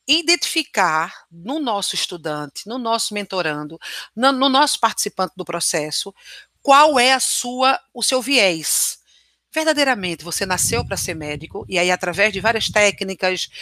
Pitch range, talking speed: 170-210 Hz, 135 wpm